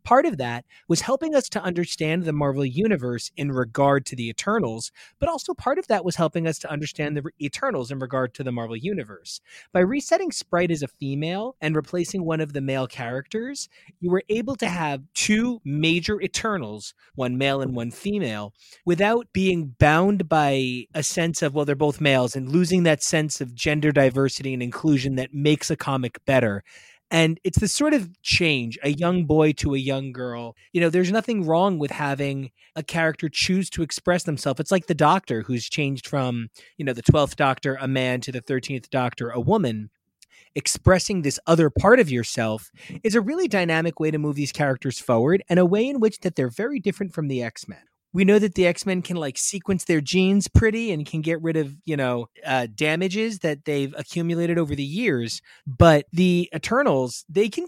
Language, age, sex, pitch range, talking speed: English, 30-49, male, 135-185 Hz, 200 wpm